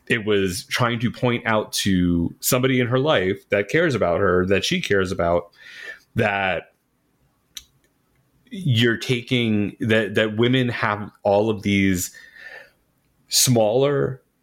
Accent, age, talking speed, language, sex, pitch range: American, 30-49, 125 wpm, English, male, 95-120 Hz